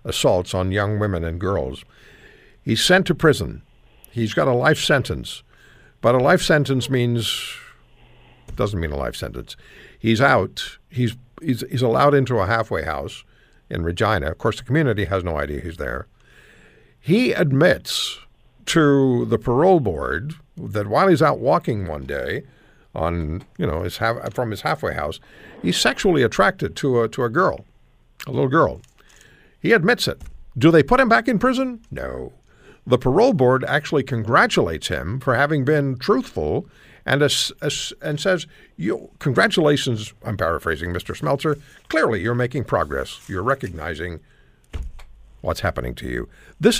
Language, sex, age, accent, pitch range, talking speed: English, male, 60-79, American, 95-150 Hz, 155 wpm